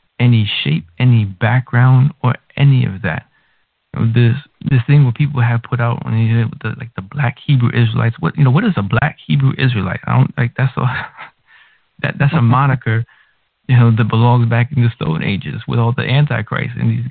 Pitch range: 110-130 Hz